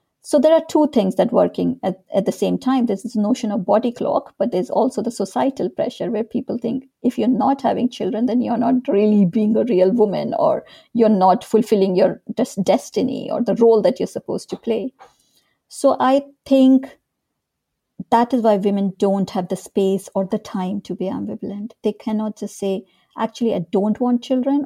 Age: 50-69